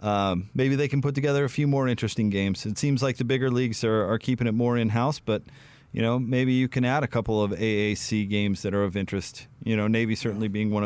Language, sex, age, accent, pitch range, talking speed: English, male, 30-49, American, 120-145 Hz, 250 wpm